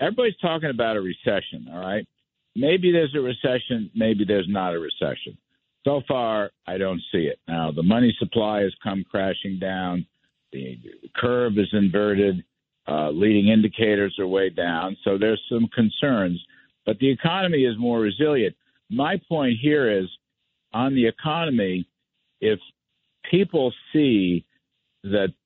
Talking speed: 145 wpm